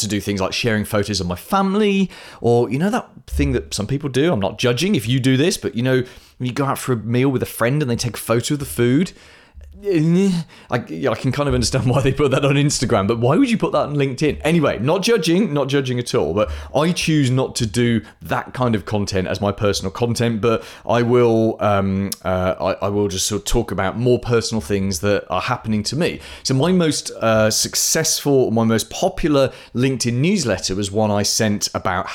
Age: 30-49